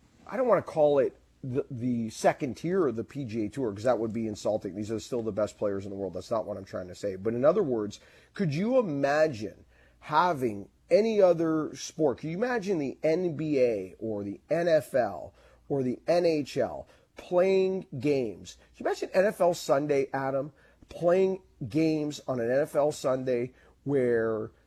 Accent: American